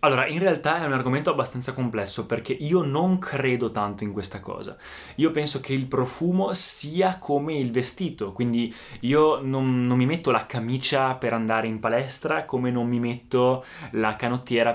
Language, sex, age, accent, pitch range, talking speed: Italian, male, 20-39, native, 110-140 Hz, 175 wpm